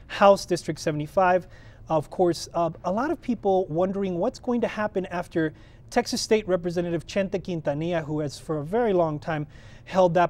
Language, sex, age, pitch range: English, male, 30-49, 145-195 Hz